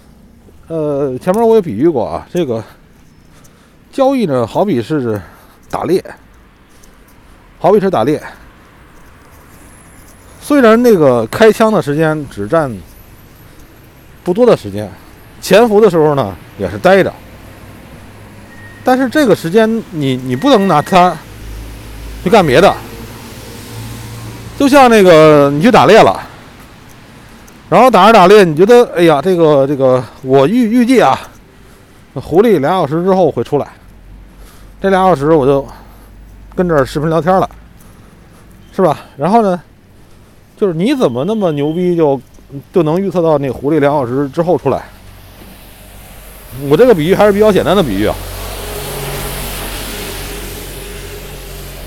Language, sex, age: Chinese, male, 50-69